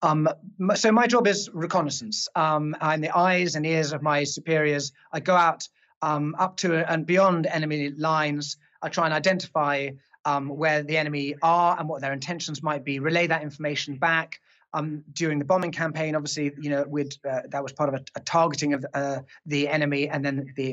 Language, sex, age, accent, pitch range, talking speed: English, male, 30-49, British, 145-165 Hz, 195 wpm